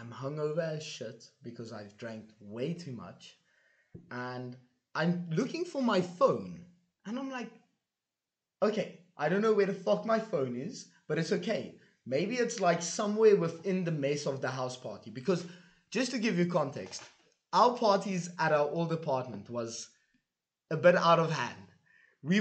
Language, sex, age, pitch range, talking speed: English, male, 20-39, 135-195 Hz, 165 wpm